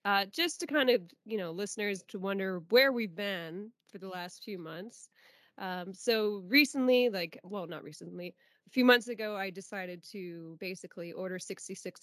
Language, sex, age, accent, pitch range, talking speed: English, female, 20-39, American, 185-245 Hz, 175 wpm